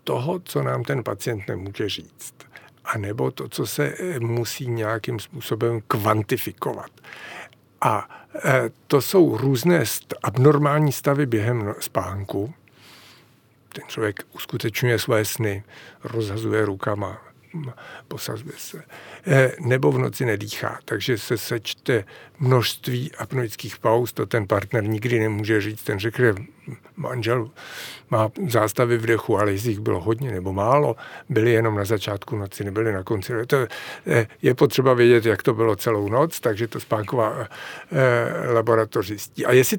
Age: 50-69